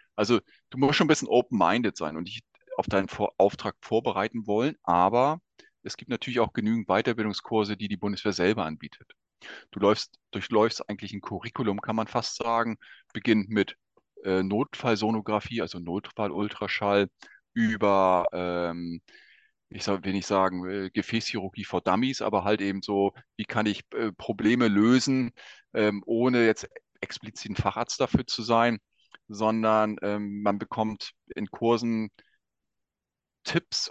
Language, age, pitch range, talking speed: German, 30-49, 95-110 Hz, 145 wpm